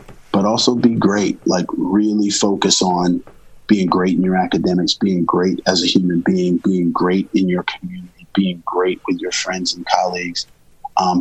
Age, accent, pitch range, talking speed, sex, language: 30-49, American, 90-110 Hz, 170 wpm, male, English